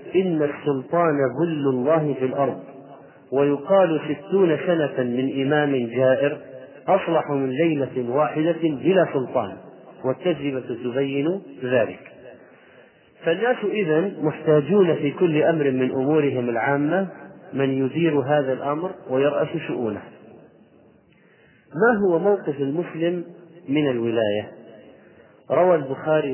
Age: 40-59